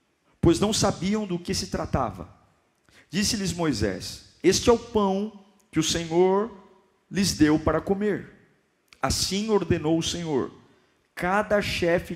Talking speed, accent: 130 wpm, Brazilian